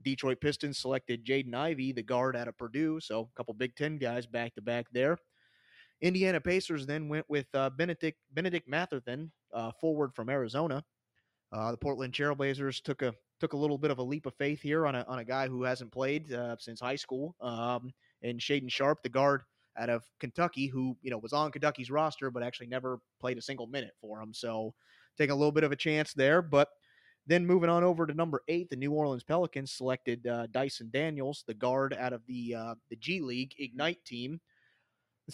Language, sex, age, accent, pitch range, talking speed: English, male, 30-49, American, 125-155 Hz, 210 wpm